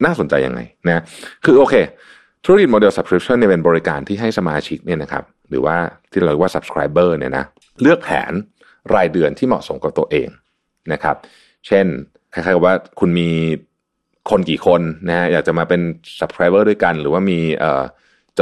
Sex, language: male, Thai